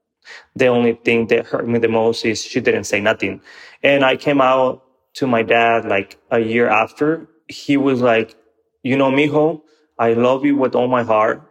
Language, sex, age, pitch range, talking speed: English, male, 20-39, 115-135 Hz, 195 wpm